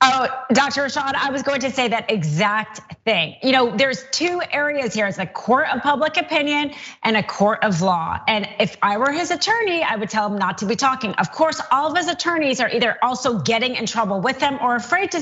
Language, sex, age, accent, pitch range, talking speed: English, female, 30-49, American, 215-295 Hz, 235 wpm